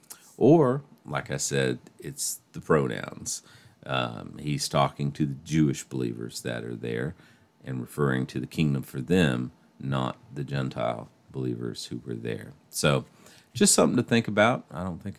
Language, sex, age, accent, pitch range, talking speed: English, male, 40-59, American, 70-95 Hz, 160 wpm